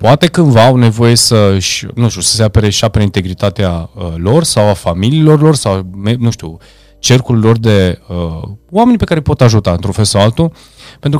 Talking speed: 195 wpm